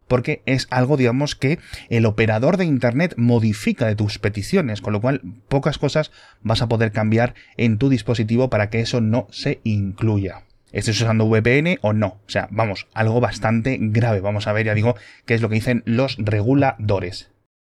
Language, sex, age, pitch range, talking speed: Spanish, male, 20-39, 105-125 Hz, 185 wpm